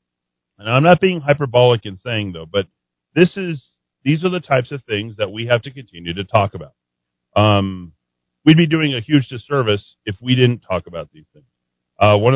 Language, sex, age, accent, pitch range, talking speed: English, male, 40-59, American, 100-140 Hz, 200 wpm